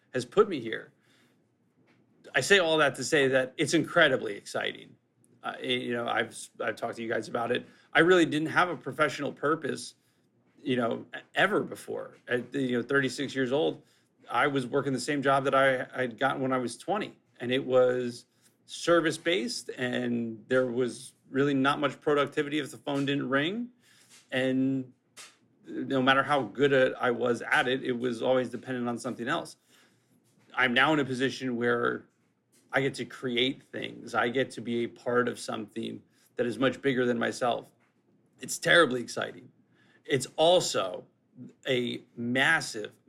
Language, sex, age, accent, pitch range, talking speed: English, male, 30-49, American, 125-145 Hz, 170 wpm